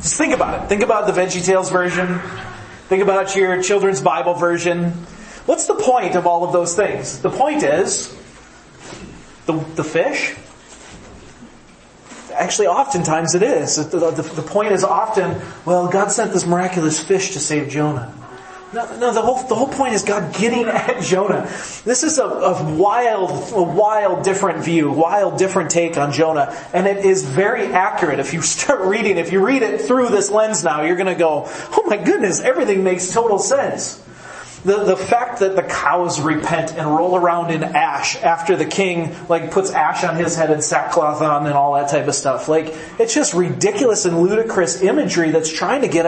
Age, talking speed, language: 30-49, 190 wpm, English